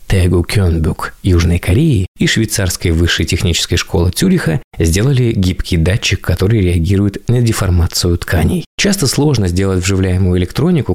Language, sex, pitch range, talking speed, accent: Russian, male, 90-120 Hz, 125 wpm, native